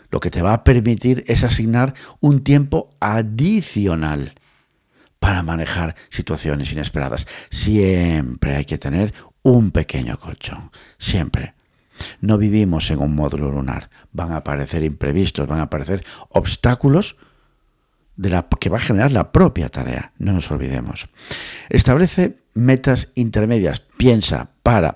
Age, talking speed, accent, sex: 50-69, 130 wpm, Spanish, male